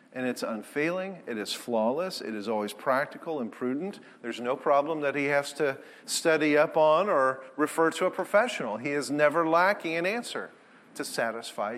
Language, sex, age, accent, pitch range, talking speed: English, male, 40-59, American, 140-220 Hz, 180 wpm